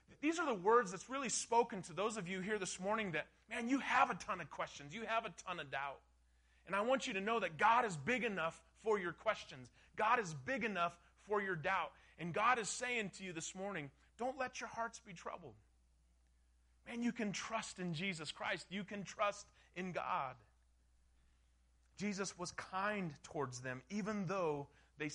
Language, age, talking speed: English, 30-49, 200 wpm